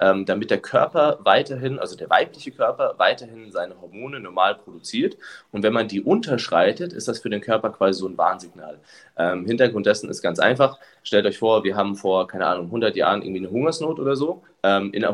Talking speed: 205 wpm